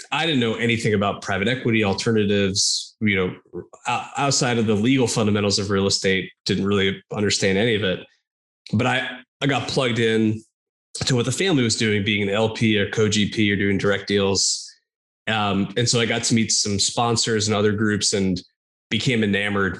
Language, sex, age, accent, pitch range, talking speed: English, male, 20-39, American, 95-120 Hz, 185 wpm